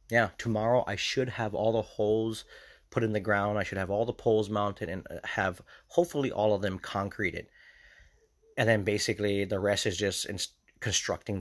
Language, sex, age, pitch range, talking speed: English, male, 30-49, 95-120 Hz, 180 wpm